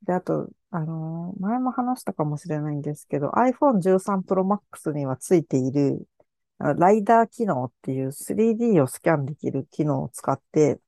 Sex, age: female, 50-69